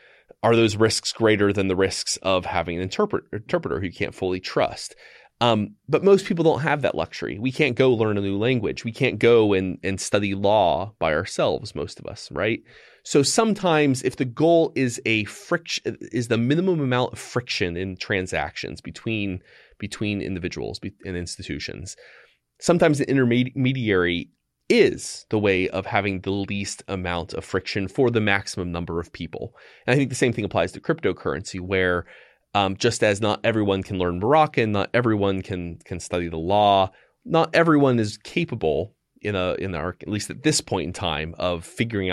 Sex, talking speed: male, 180 wpm